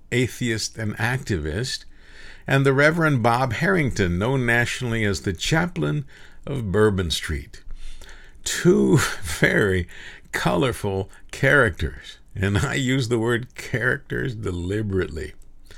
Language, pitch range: English, 105-130 Hz